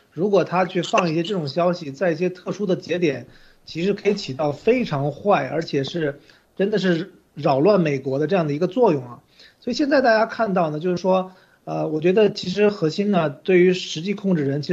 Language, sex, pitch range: Chinese, male, 155-205 Hz